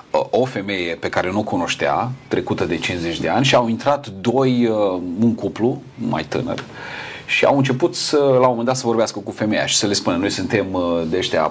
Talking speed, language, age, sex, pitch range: 210 wpm, Romanian, 40-59, male, 100-130 Hz